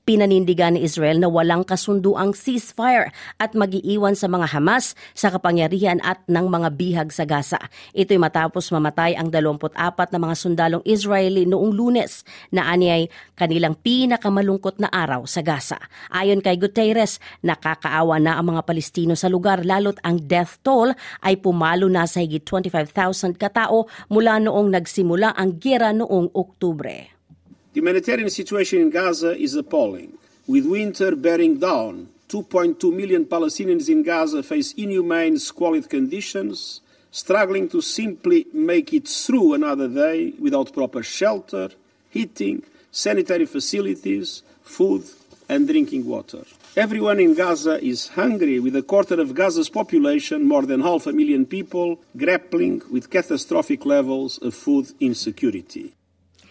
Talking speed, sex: 140 wpm, female